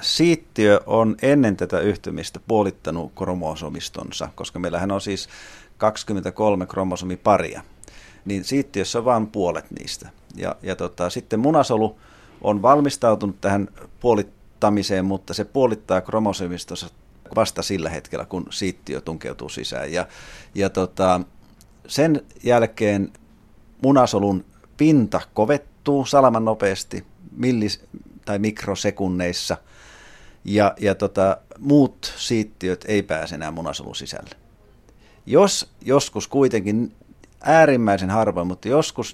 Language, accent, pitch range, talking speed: Finnish, native, 90-110 Hz, 105 wpm